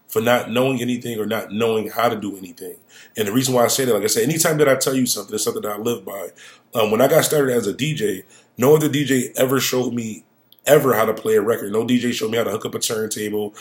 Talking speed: 275 wpm